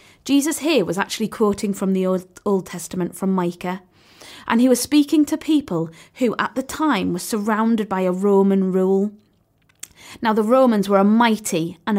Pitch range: 195-250 Hz